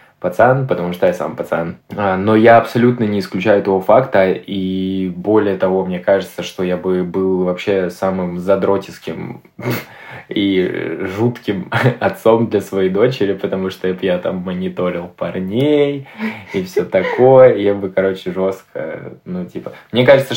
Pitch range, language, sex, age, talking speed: 95-115 Hz, Russian, male, 20-39, 145 wpm